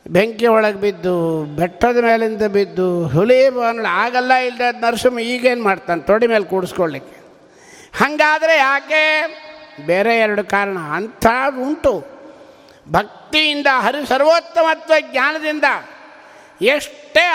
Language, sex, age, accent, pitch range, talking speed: Kannada, male, 50-69, native, 225-320 Hz, 95 wpm